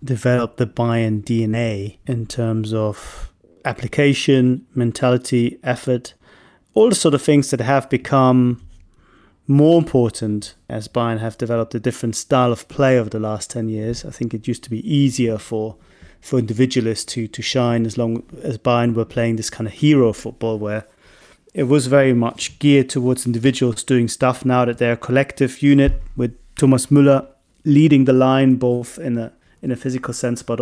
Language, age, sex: English, 30-49, male